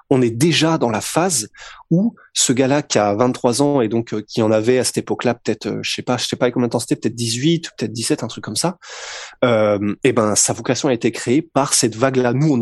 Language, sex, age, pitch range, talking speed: French, male, 20-39, 115-145 Hz, 250 wpm